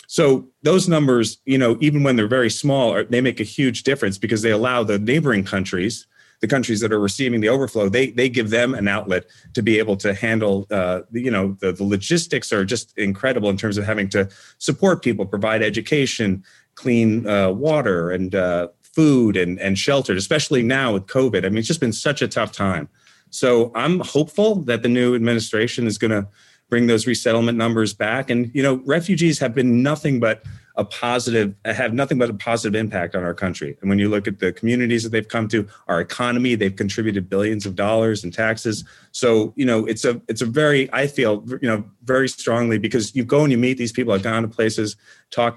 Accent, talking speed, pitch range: American, 210 wpm, 105-130 Hz